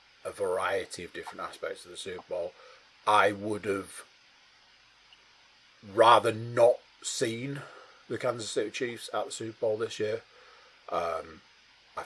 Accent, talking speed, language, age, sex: British, 135 wpm, English, 40-59, male